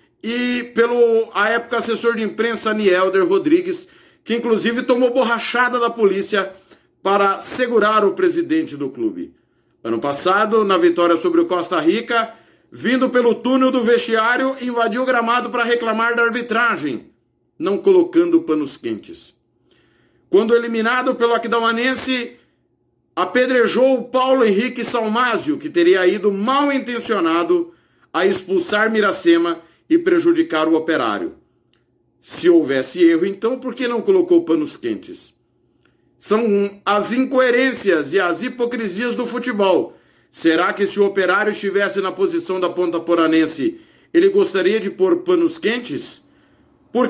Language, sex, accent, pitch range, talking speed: Portuguese, male, Brazilian, 195-275 Hz, 130 wpm